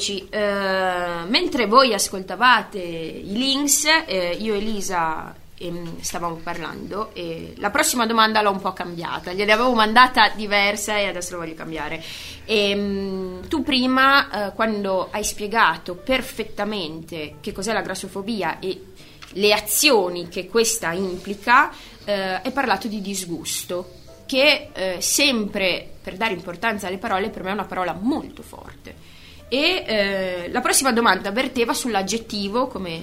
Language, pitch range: Italian, 180-250 Hz